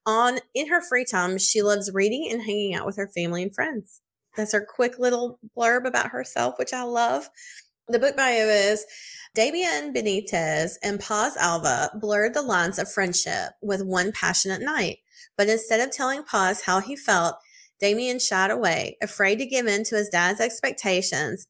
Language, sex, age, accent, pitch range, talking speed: English, female, 30-49, American, 190-230 Hz, 175 wpm